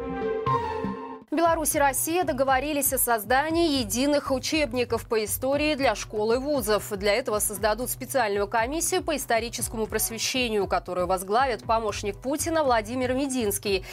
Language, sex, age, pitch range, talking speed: Russian, female, 20-39, 210-285 Hz, 120 wpm